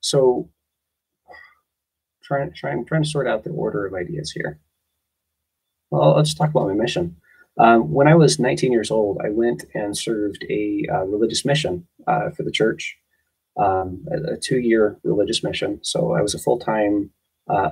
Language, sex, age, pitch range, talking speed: English, male, 20-39, 95-140 Hz, 165 wpm